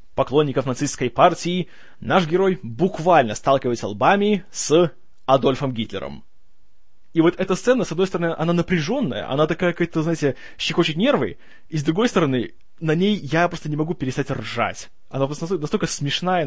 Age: 20-39